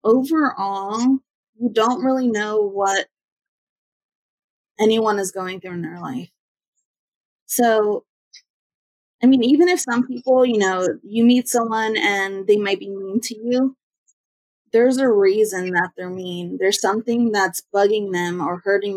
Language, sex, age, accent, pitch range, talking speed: English, female, 20-39, American, 190-235 Hz, 140 wpm